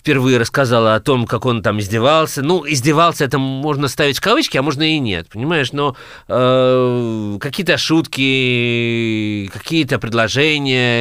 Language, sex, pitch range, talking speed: Russian, male, 120-165 Hz, 135 wpm